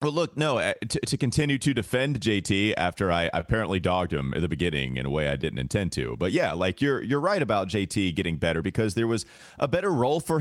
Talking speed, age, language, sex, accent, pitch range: 240 wpm, 30-49, English, male, American, 90-120 Hz